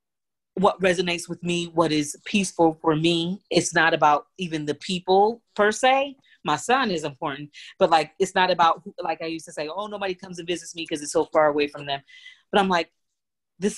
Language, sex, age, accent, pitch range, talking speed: English, female, 30-49, American, 150-190 Hz, 210 wpm